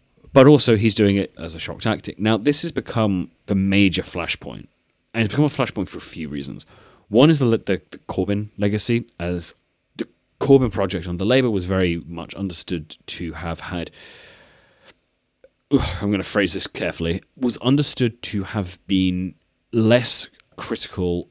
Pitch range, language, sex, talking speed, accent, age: 90-110 Hz, English, male, 165 wpm, British, 30-49